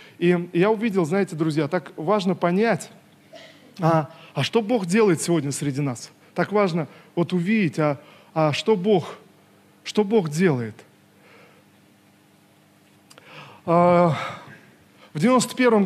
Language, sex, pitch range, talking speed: Russian, male, 150-180 Hz, 100 wpm